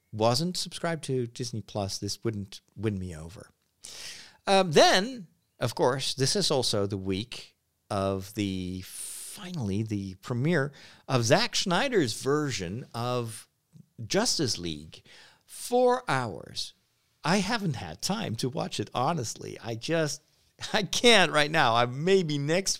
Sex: male